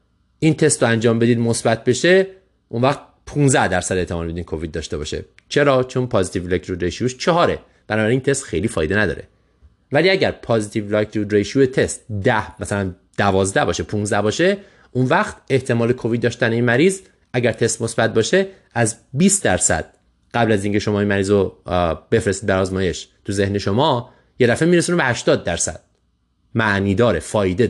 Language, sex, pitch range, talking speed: Persian, male, 95-125 Hz, 165 wpm